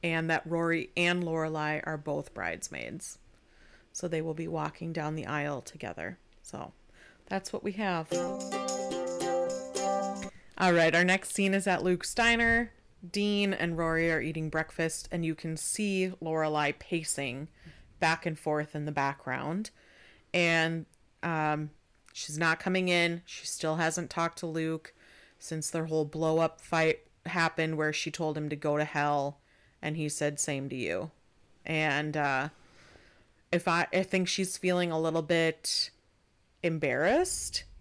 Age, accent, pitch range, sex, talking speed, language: 30-49, American, 155-185 Hz, female, 150 wpm, English